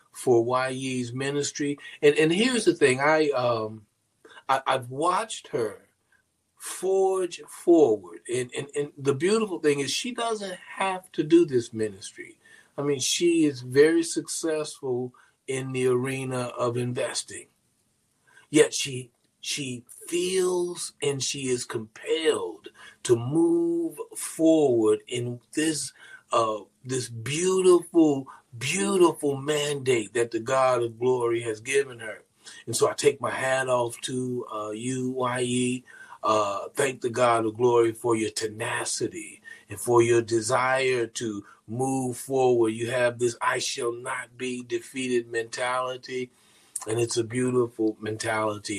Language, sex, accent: English, male, American